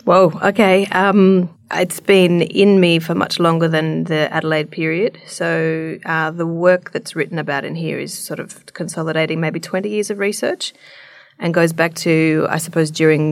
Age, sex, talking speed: 30-49, female, 175 wpm